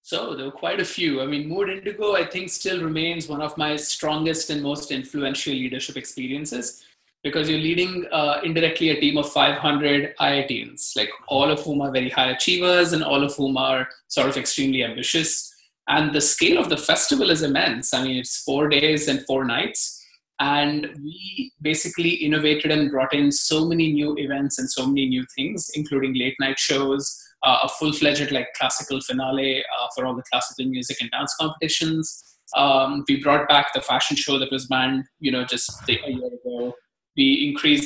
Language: English